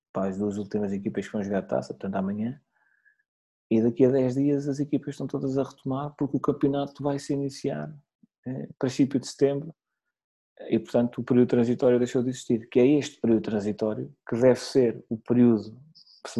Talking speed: 185 wpm